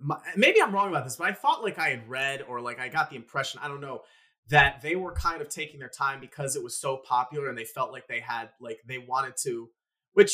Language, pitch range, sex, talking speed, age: English, 130-200 Hz, male, 260 wpm, 30-49